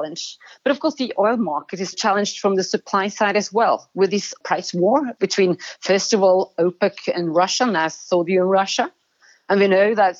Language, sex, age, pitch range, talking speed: English, female, 40-59, 170-205 Hz, 195 wpm